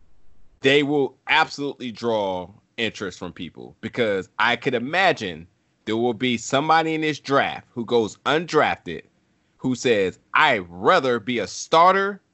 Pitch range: 110-155 Hz